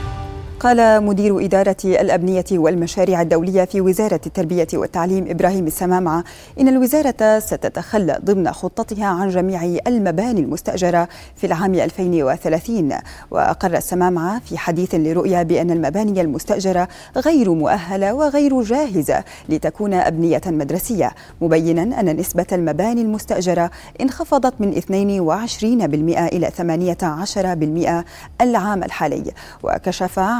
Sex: female